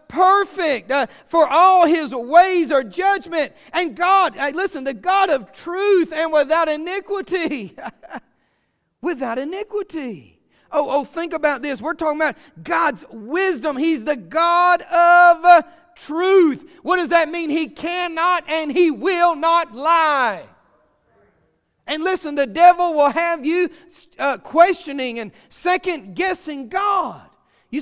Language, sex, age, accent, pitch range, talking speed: English, male, 40-59, American, 245-345 Hz, 130 wpm